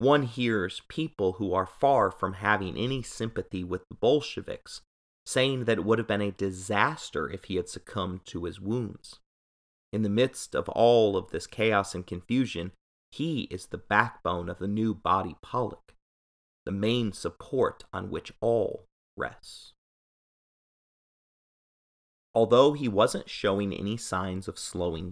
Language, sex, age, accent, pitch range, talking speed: English, male, 30-49, American, 95-115 Hz, 150 wpm